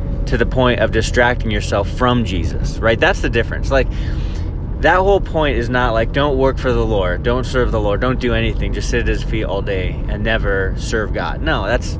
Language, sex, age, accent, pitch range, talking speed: English, male, 20-39, American, 110-130 Hz, 220 wpm